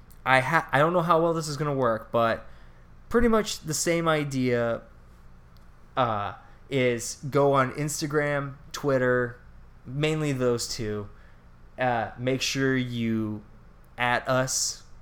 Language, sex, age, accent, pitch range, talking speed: English, male, 20-39, American, 110-140 Hz, 130 wpm